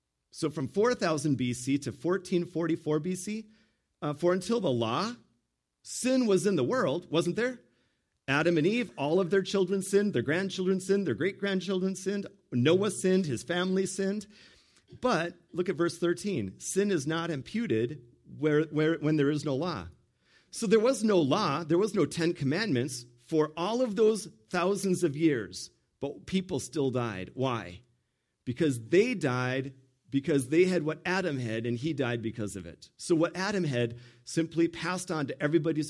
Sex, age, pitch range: male, 40-59, 130-185 Hz